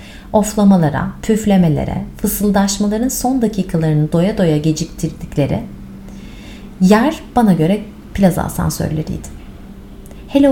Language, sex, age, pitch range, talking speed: Turkish, female, 30-49, 165-230 Hz, 80 wpm